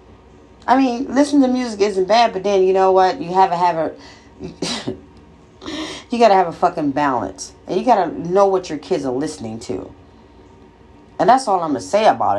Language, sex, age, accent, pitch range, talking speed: English, female, 40-59, American, 140-215 Hz, 210 wpm